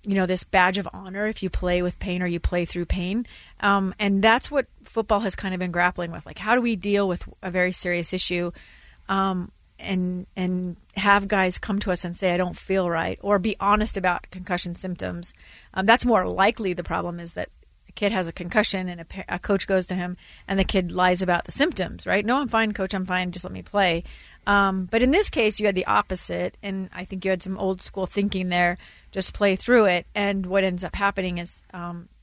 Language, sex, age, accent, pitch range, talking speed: English, female, 30-49, American, 175-200 Hz, 235 wpm